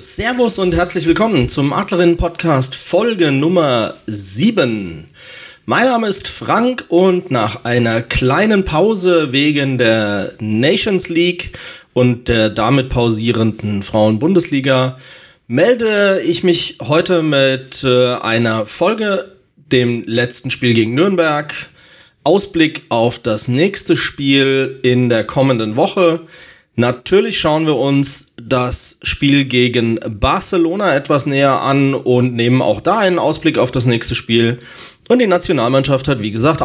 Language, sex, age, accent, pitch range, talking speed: German, male, 30-49, German, 125-175 Hz, 125 wpm